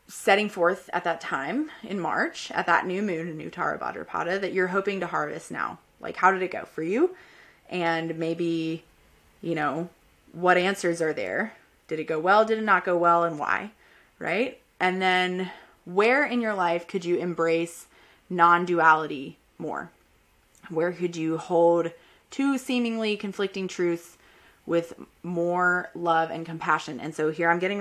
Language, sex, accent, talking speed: English, female, American, 165 wpm